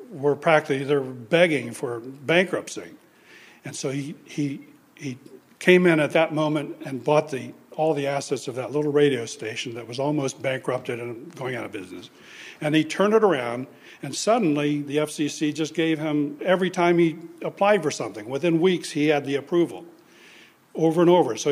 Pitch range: 140-175 Hz